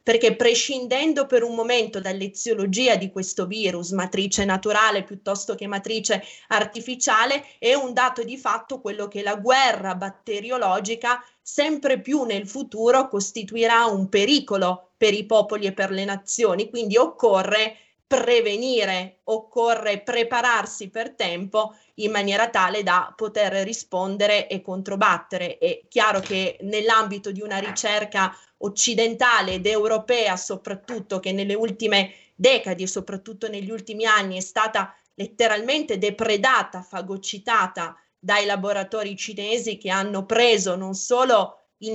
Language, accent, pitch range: Italian, native, 195-235 Hz